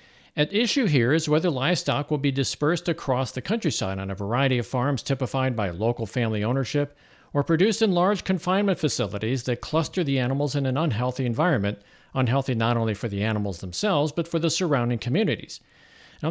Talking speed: 180 wpm